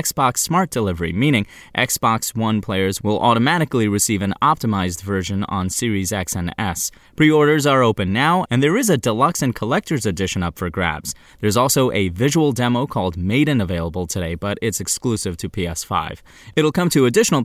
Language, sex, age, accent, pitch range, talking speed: English, male, 20-39, American, 95-130 Hz, 175 wpm